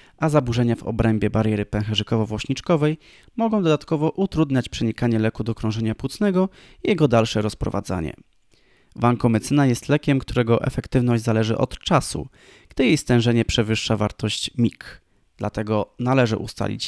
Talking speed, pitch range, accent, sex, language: 130 wpm, 110-130 Hz, native, male, Polish